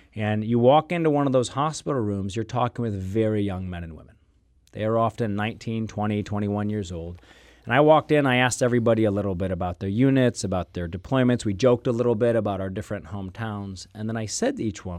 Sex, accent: male, American